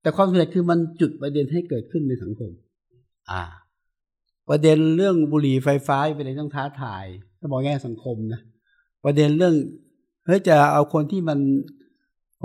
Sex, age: male, 60-79